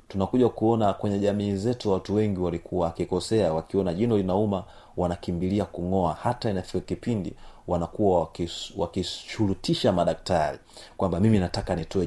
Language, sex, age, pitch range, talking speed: Swahili, male, 30-49, 85-110 Hz, 120 wpm